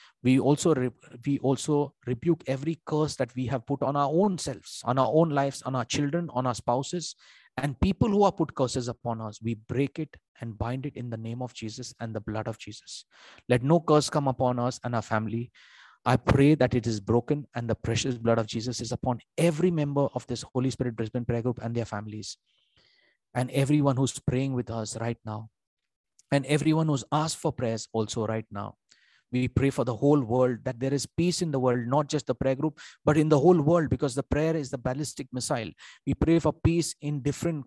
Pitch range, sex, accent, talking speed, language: 120-145 Hz, male, Indian, 215 wpm, English